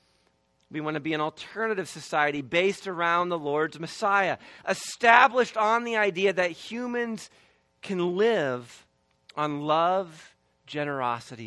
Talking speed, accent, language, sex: 120 wpm, American, English, male